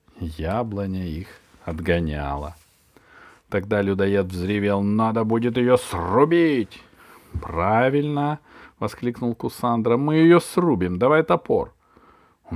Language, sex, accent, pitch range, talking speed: Russian, male, native, 90-125 Hz, 90 wpm